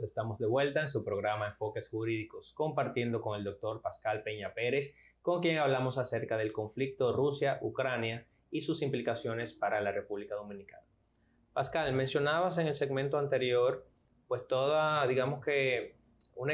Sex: male